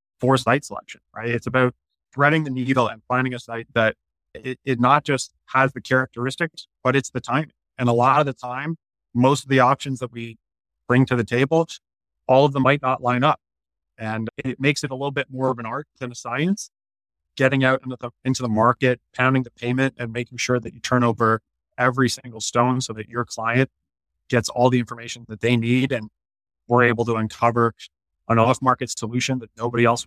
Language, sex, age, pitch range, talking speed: English, male, 30-49, 110-130 Hz, 210 wpm